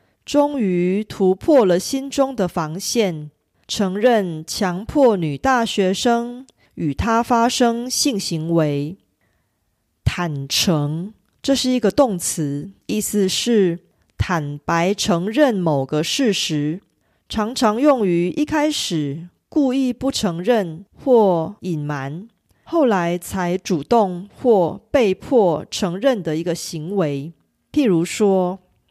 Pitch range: 170-240 Hz